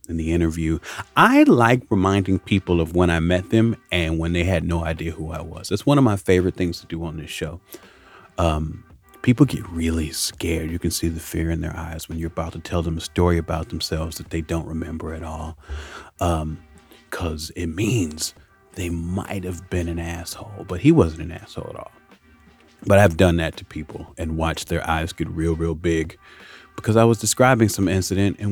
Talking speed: 210 wpm